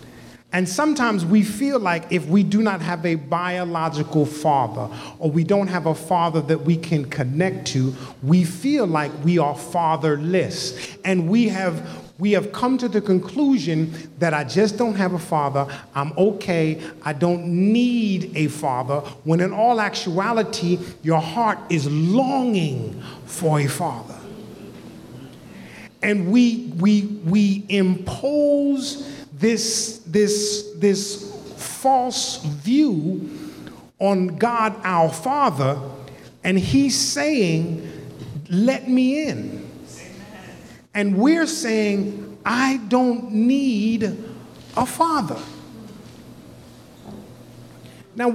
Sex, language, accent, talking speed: male, English, American, 115 wpm